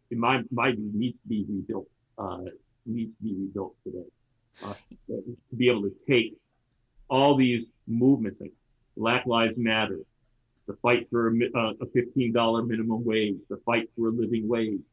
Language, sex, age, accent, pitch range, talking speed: English, male, 50-69, American, 110-130 Hz, 170 wpm